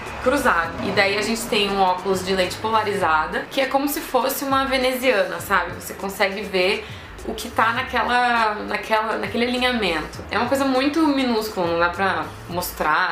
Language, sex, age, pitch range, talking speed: Portuguese, female, 20-39, 185-235 Hz, 175 wpm